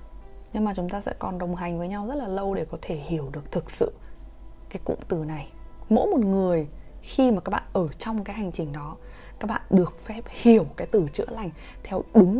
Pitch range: 170-245 Hz